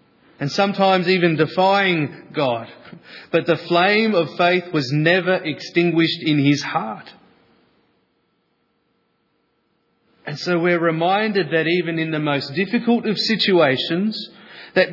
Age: 30-49